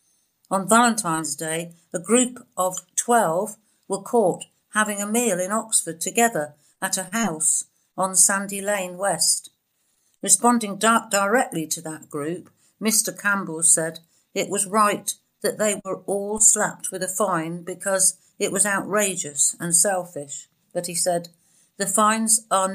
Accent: British